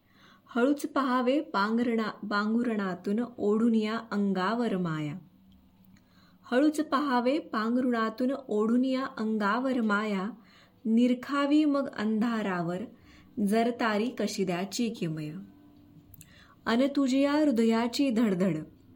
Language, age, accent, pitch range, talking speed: Marathi, 20-39, native, 195-245 Hz, 80 wpm